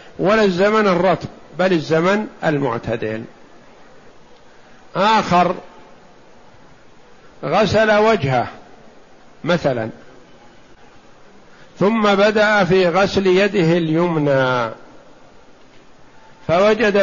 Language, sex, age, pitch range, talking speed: Arabic, male, 50-69, 165-205 Hz, 60 wpm